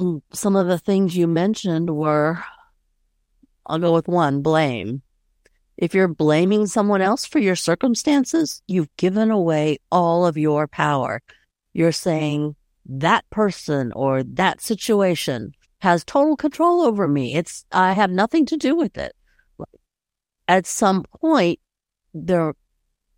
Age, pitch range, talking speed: 60-79, 155-195 Hz, 130 wpm